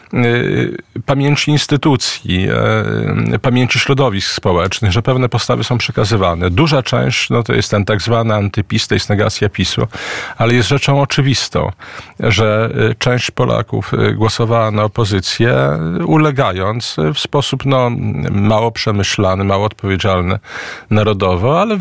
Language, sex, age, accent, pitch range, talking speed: Polish, male, 40-59, native, 105-130 Hz, 120 wpm